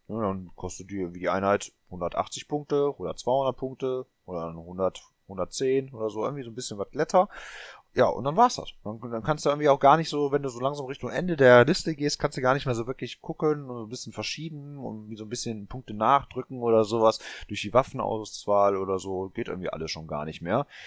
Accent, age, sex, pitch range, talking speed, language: German, 30-49, male, 95-130 Hz, 225 wpm, German